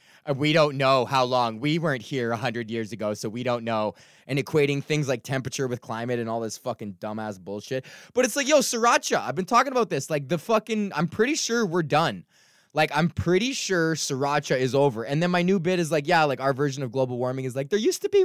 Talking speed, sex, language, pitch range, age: 240 wpm, male, English, 120-175 Hz, 20-39